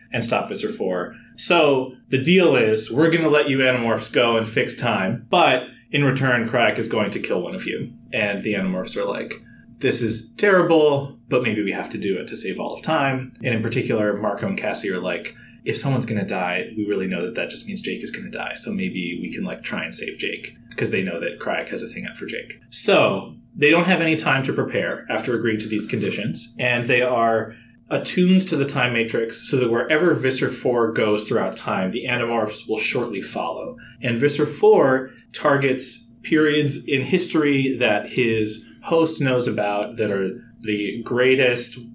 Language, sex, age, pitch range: English, male, 20-39, 115-140 Hz